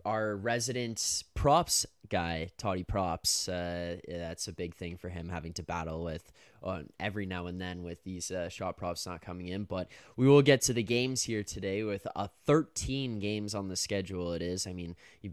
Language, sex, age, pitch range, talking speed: English, male, 10-29, 90-105 Hz, 200 wpm